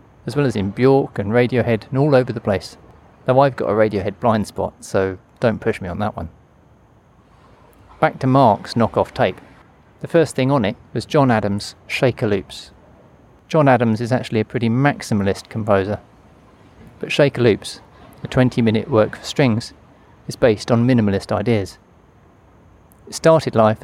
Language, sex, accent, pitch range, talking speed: English, male, British, 105-130 Hz, 165 wpm